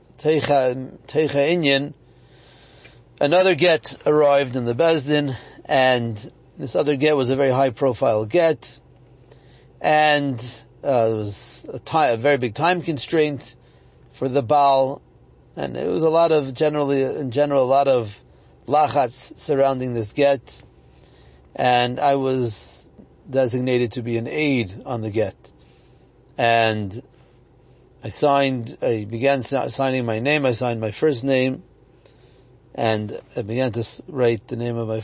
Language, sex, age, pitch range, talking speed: English, male, 40-59, 115-140 Hz, 140 wpm